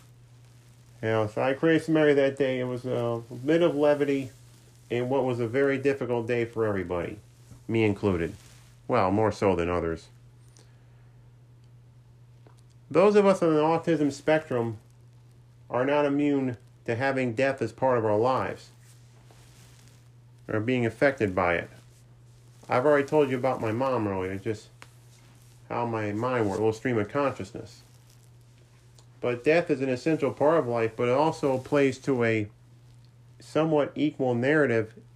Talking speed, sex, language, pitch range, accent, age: 150 wpm, male, English, 120-135 Hz, American, 40-59